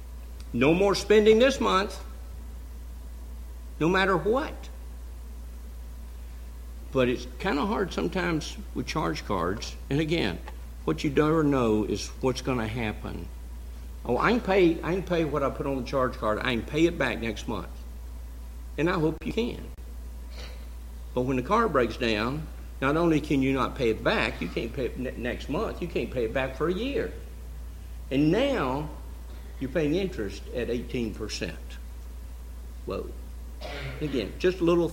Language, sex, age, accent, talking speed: English, male, 60-79, American, 160 wpm